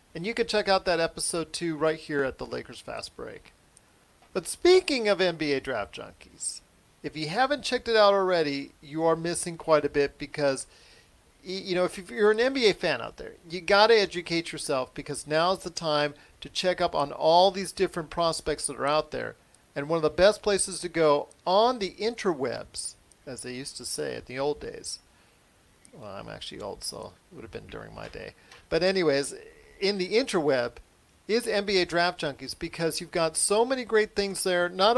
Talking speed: 195 wpm